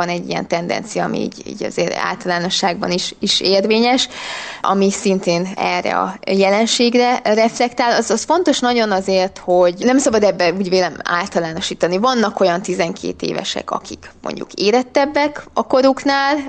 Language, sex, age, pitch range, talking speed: Hungarian, female, 20-39, 180-225 Hz, 140 wpm